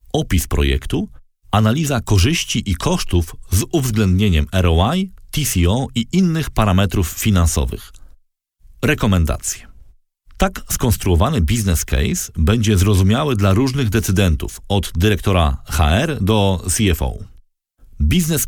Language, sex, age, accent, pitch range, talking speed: Polish, male, 40-59, native, 85-110 Hz, 95 wpm